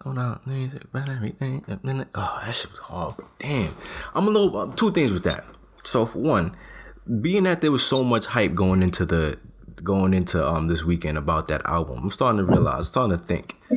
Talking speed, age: 195 wpm, 20-39